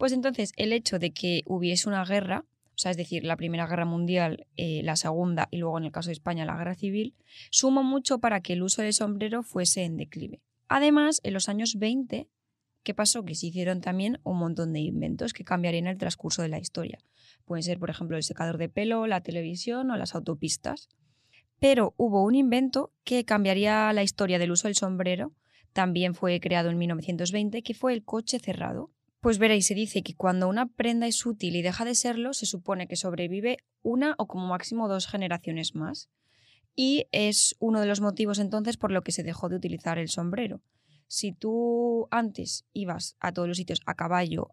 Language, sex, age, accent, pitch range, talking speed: Spanish, female, 20-39, Spanish, 170-215 Hz, 200 wpm